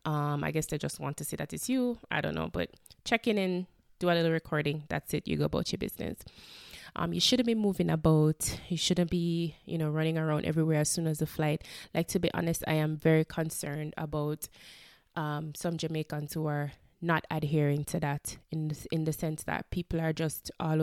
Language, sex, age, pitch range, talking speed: English, female, 20-39, 155-175 Hz, 215 wpm